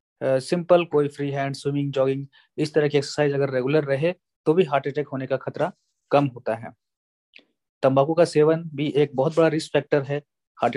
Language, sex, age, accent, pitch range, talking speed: English, male, 30-49, Indian, 135-150 Hz, 195 wpm